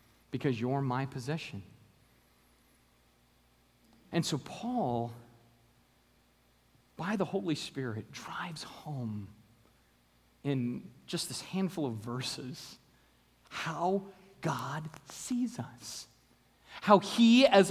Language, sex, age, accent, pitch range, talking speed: English, male, 40-59, American, 115-175 Hz, 90 wpm